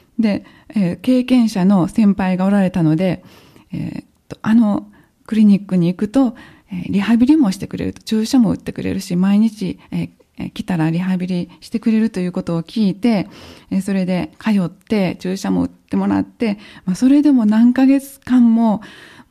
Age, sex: 20-39, female